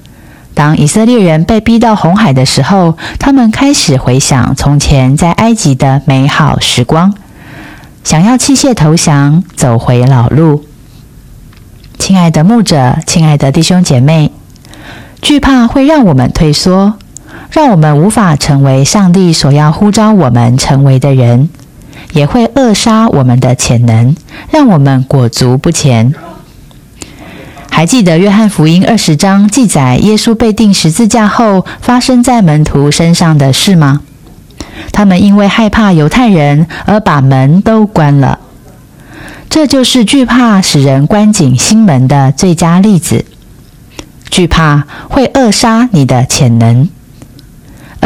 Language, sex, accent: Chinese, female, native